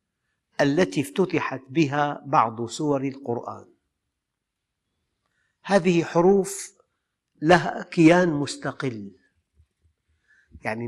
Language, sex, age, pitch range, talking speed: Arabic, male, 50-69, 120-175 Hz, 65 wpm